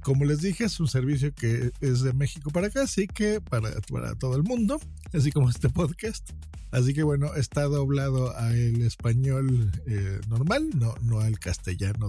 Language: Spanish